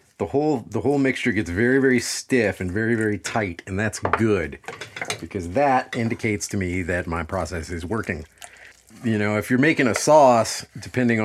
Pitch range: 95-120 Hz